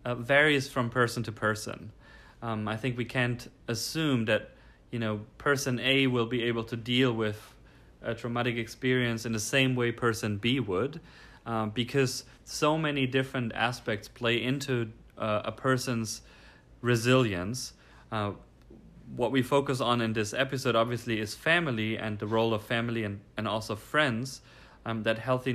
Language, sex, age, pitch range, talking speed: English, male, 30-49, 110-130 Hz, 160 wpm